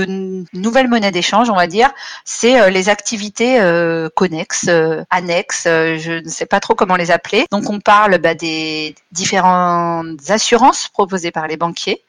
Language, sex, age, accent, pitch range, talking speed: French, female, 40-59, French, 170-205 Hz, 180 wpm